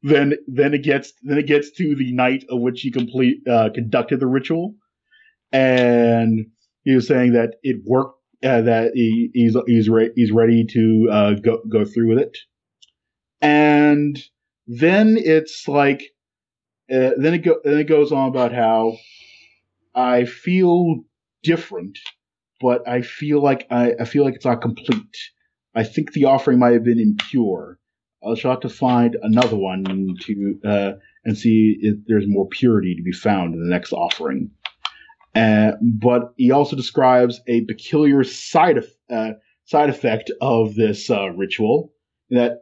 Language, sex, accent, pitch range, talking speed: English, male, American, 115-140 Hz, 160 wpm